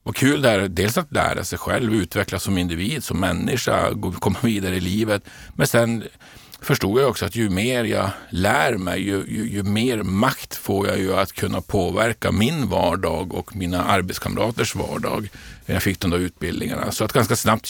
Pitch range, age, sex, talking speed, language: 90-110 Hz, 50-69, male, 185 wpm, Swedish